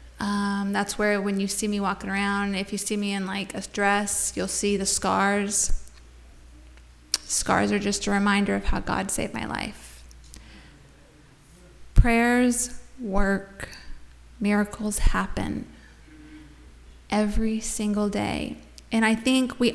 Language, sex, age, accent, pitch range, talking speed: English, female, 20-39, American, 195-225 Hz, 130 wpm